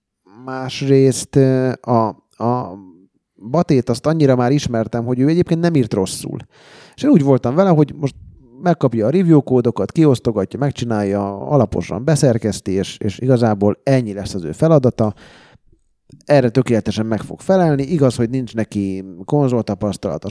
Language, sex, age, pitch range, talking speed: Hungarian, male, 30-49, 100-130 Hz, 135 wpm